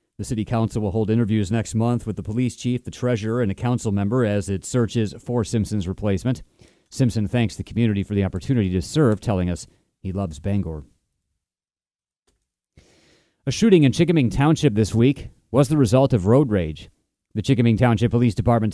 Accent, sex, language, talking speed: American, male, English, 180 wpm